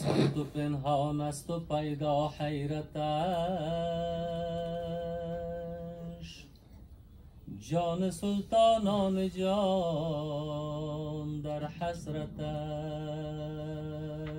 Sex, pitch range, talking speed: male, 150-170 Hz, 50 wpm